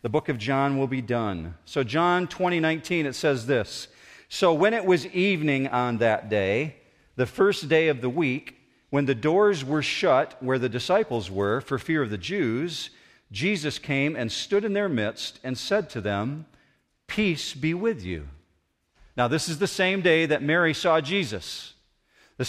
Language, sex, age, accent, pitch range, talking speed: English, male, 50-69, American, 125-170 Hz, 180 wpm